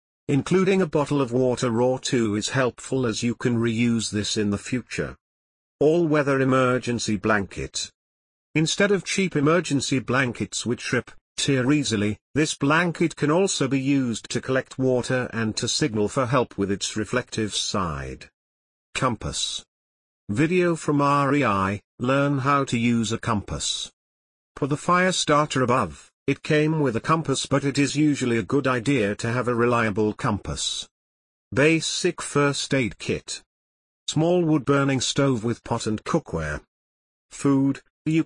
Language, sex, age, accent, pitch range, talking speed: English, male, 50-69, British, 105-145 Hz, 145 wpm